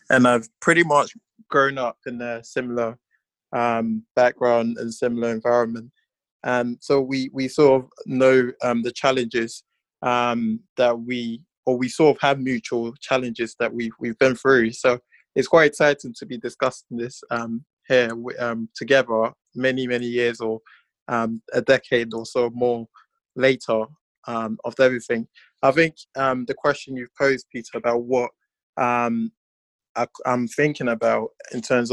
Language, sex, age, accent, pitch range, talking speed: English, male, 20-39, British, 120-135 Hz, 150 wpm